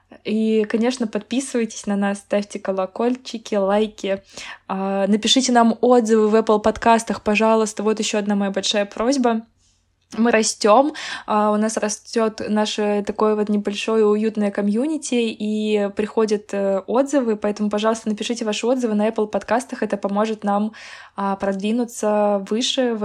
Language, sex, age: Russian, female, 20-39